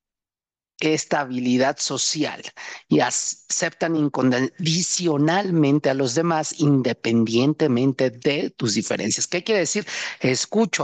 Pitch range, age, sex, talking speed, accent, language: 135-170 Hz, 40-59, male, 90 wpm, Mexican, Spanish